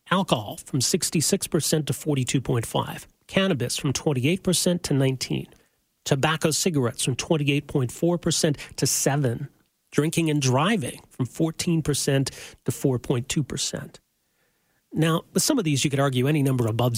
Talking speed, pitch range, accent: 120 wpm, 130-170 Hz, American